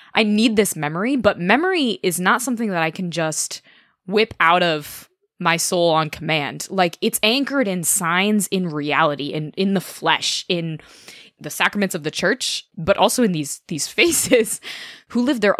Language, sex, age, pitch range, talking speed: English, female, 20-39, 160-205 Hz, 180 wpm